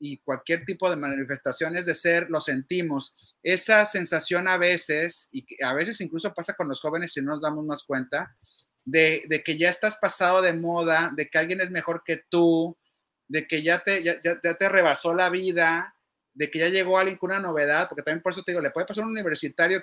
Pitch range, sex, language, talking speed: 165-200 Hz, male, Spanish, 215 wpm